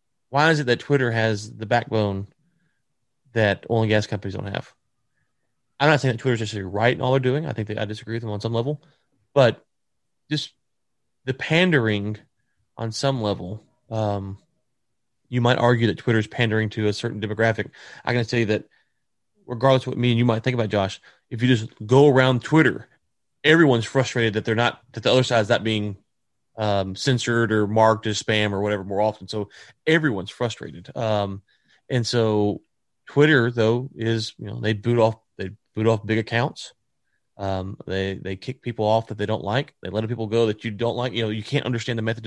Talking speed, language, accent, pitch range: 205 wpm, English, American, 110-125 Hz